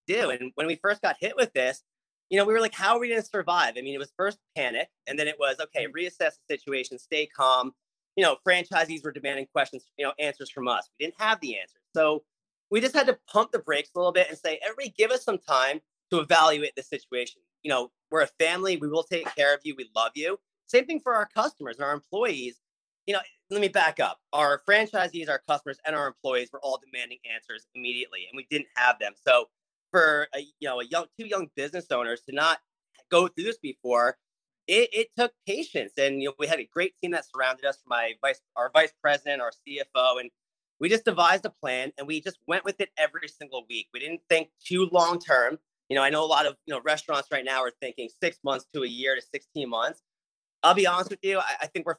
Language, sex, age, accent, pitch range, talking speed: English, male, 30-49, American, 135-190 Hz, 245 wpm